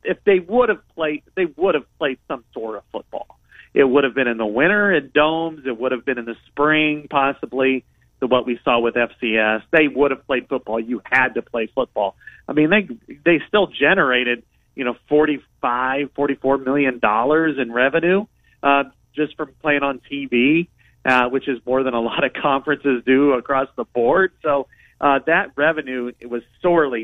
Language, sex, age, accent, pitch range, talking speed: English, male, 40-59, American, 120-150 Hz, 190 wpm